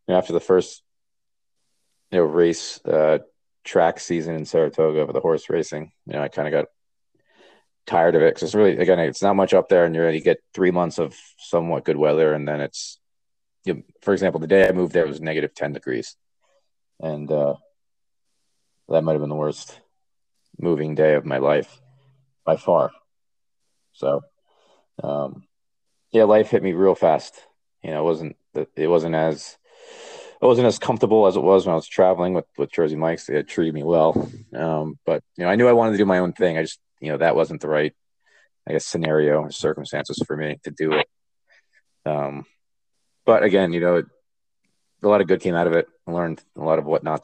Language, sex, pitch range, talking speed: English, male, 80-105 Hz, 210 wpm